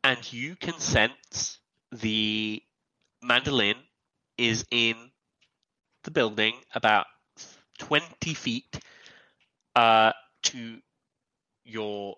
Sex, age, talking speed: male, 30-49, 80 wpm